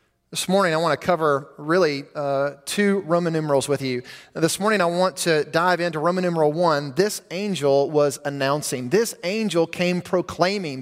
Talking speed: 170 wpm